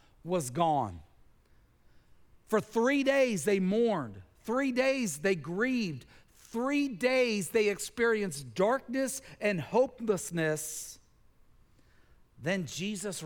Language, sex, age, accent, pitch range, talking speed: English, male, 40-59, American, 160-245 Hz, 90 wpm